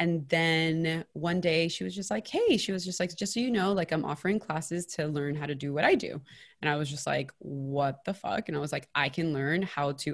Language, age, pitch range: English, 20-39, 145-175 Hz